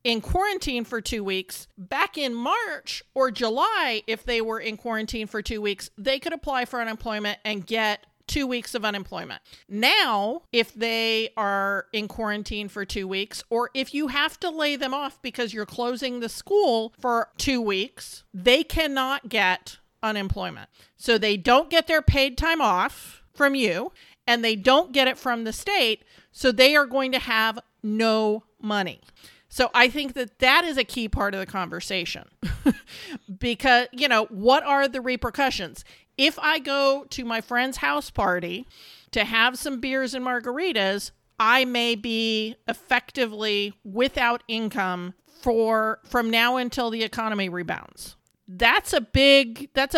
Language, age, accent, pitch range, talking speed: English, 40-59, American, 215-265 Hz, 160 wpm